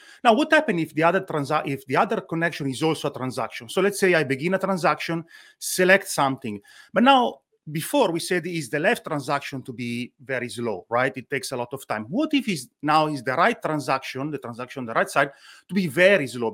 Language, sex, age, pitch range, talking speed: English, male, 30-49, 140-195 Hz, 225 wpm